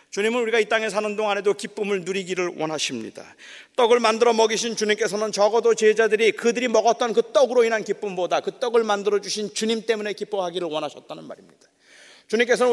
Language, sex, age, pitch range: Korean, male, 40-59, 185-240 Hz